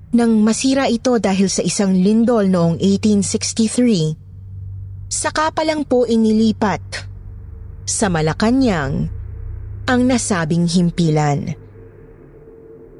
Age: 20-39